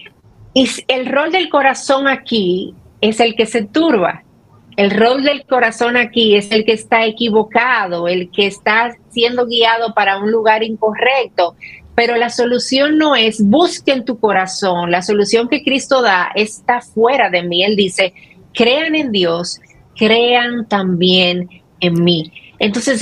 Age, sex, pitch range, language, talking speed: 40-59, female, 190-245 Hz, Spanish, 145 wpm